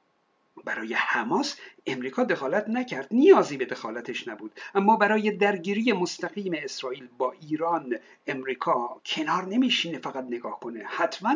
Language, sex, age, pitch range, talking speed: Persian, male, 60-79, 170-225 Hz, 120 wpm